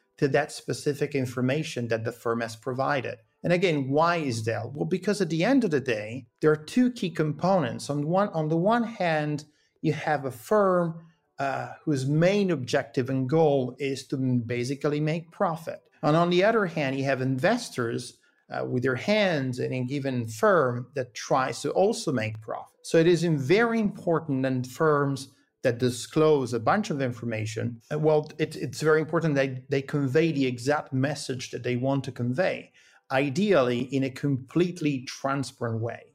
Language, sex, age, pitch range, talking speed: Italian, male, 50-69, 125-160 Hz, 170 wpm